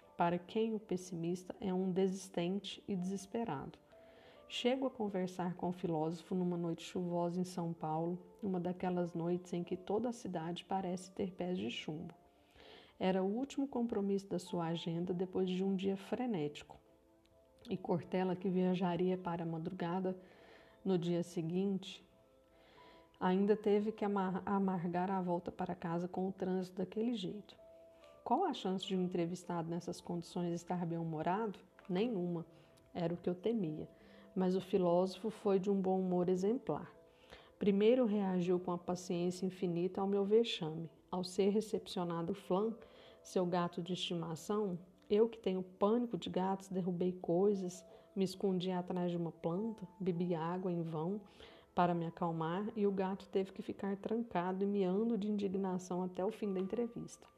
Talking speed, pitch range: 155 wpm, 175-200 Hz